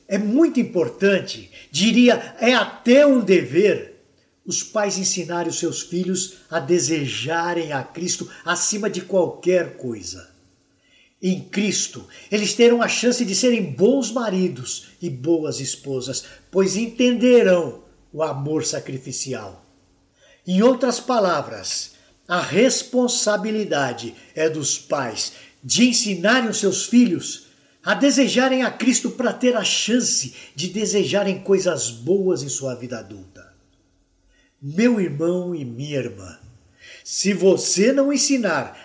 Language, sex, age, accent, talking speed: Portuguese, male, 60-79, Brazilian, 120 wpm